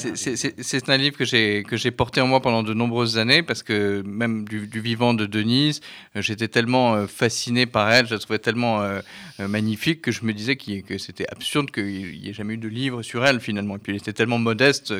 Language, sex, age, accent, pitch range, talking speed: French, male, 40-59, French, 110-130 Hz, 235 wpm